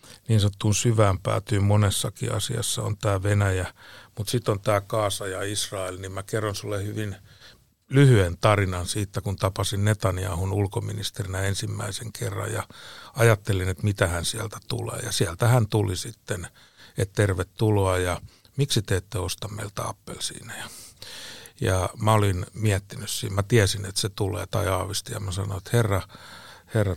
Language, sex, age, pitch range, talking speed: Finnish, male, 60-79, 95-115 Hz, 155 wpm